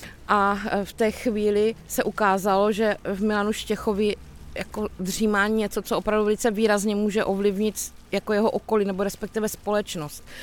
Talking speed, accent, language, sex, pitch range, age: 140 wpm, native, Czech, female, 195-225 Hz, 20-39